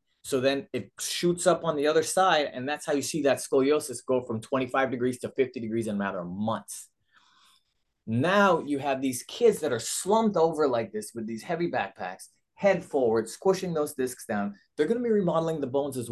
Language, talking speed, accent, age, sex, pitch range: English, 210 wpm, American, 30-49, male, 110-155 Hz